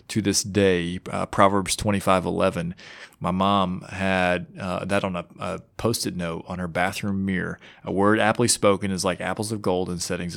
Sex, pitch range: male, 90-110 Hz